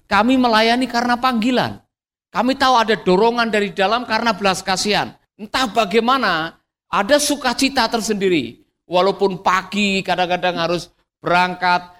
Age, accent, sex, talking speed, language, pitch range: 50-69, native, male, 115 wpm, Indonesian, 165-215 Hz